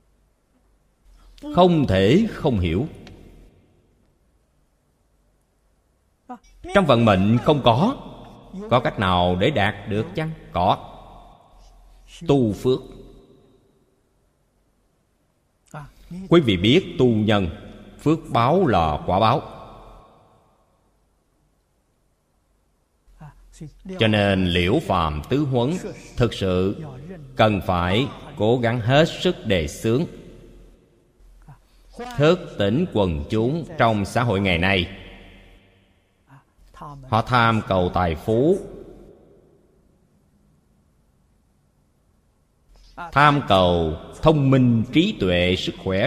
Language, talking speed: Vietnamese, 85 wpm